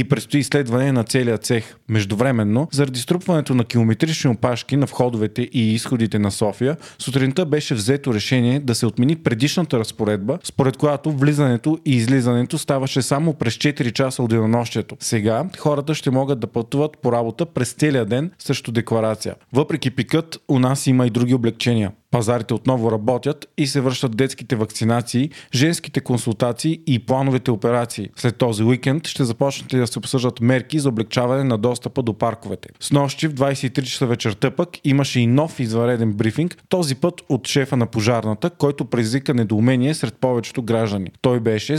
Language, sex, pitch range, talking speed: Bulgarian, male, 115-140 Hz, 165 wpm